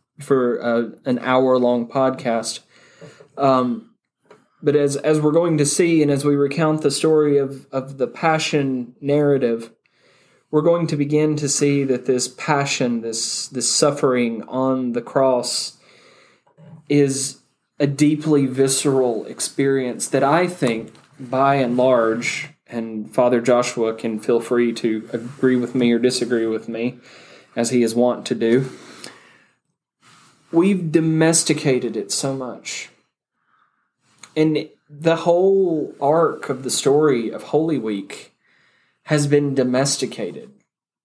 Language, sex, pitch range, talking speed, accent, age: English, male, 125-160 Hz, 130 wpm, American, 20-39